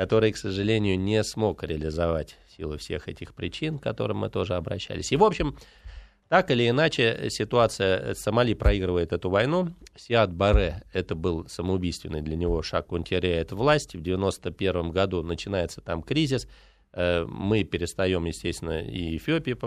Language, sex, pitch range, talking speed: Russian, male, 85-110 Hz, 145 wpm